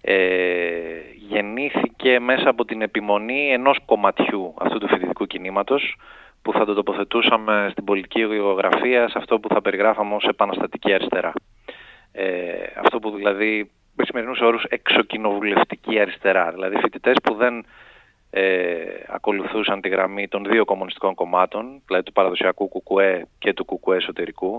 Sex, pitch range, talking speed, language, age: male, 100-125 Hz, 135 wpm, Greek, 30-49